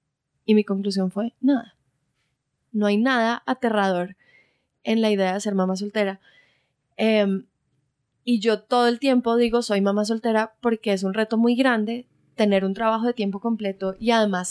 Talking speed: 165 wpm